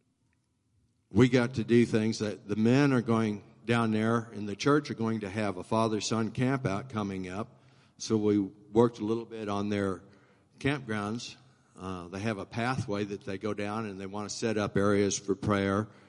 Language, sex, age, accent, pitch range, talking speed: English, male, 60-79, American, 105-125 Hz, 195 wpm